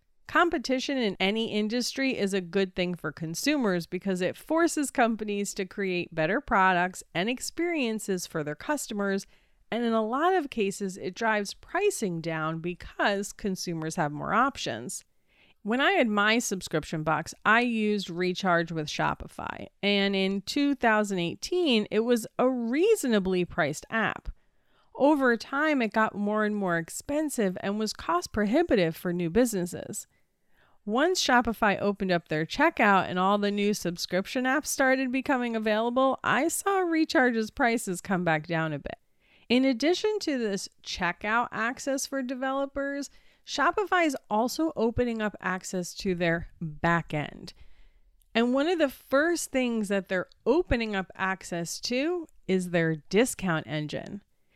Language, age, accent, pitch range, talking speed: English, 40-59, American, 180-265 Hz, 145 wpm